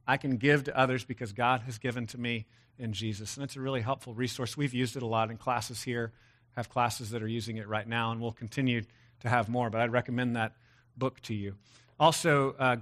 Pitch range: 120-140 Hz